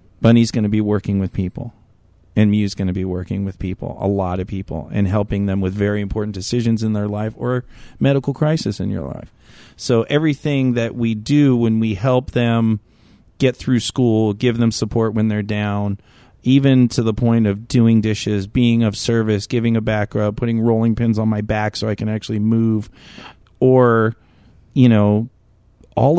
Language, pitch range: English, 100-120 Hz